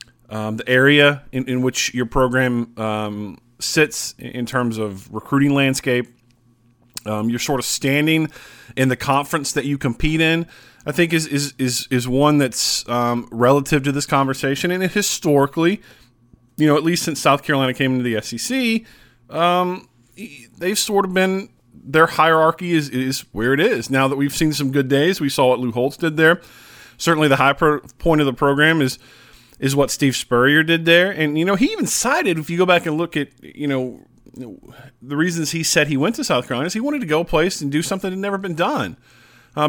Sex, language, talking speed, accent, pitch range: male, English, 205 wpm, American, 125-165 Hz